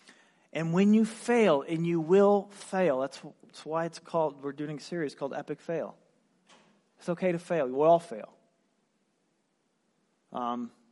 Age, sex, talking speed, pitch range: 40-59, male, 155 wpm, 150-195 Hz